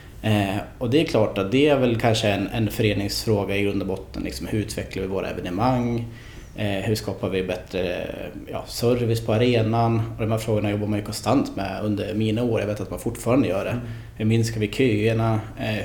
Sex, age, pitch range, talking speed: male, 20-39, 105-115 Hz, 210 wpm